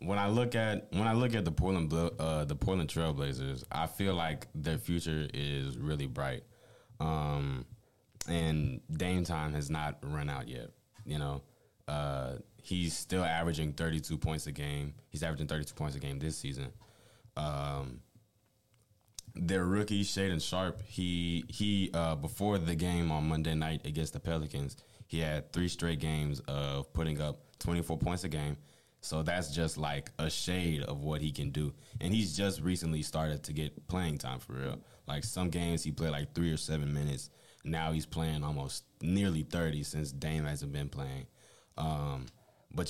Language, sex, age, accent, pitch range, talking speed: English, male, 20-39, American, 75-90 Hz, 170 wpm